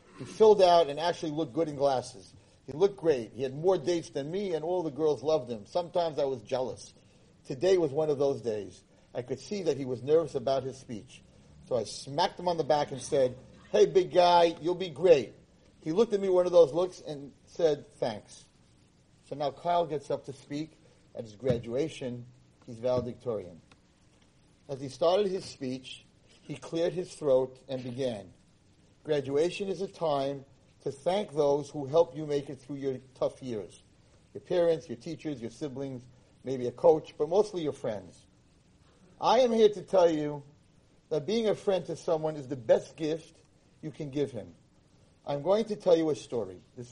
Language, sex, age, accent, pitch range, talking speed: English, male, 40-59, American, 135-175 Hz, 190 wpm